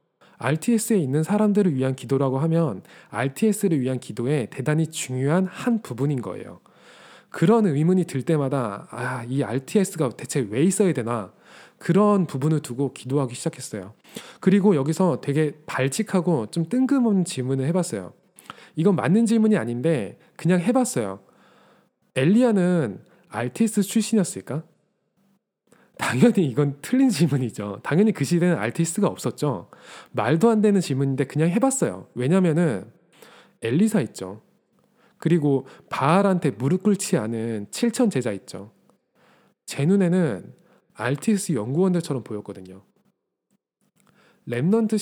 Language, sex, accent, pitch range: Korean, male, native, 135-205 Hz